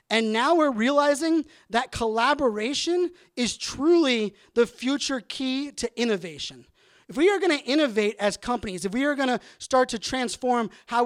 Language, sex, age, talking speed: English, male, 30-49, 165 wpm